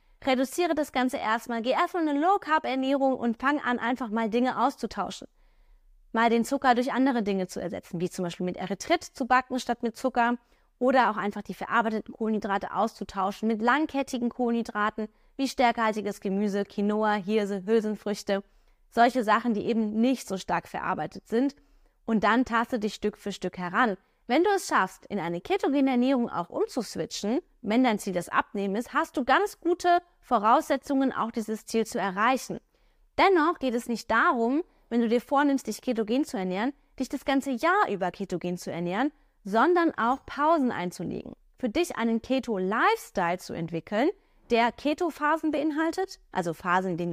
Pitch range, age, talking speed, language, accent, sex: 205-275 Hz, 20-39, 165 wpm, German, German, female